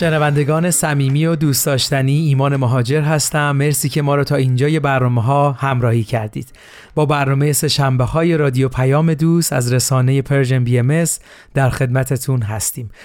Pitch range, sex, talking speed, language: 130-160 Hz, male, 160 wpm, Persian